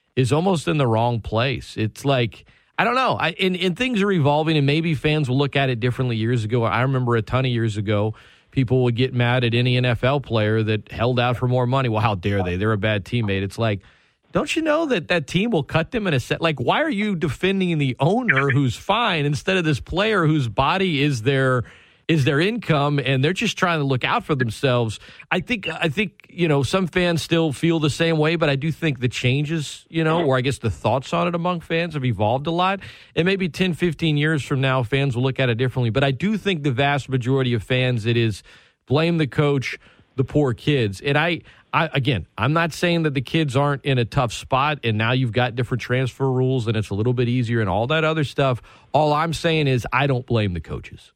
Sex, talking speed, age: male, 240 wpm, 40-59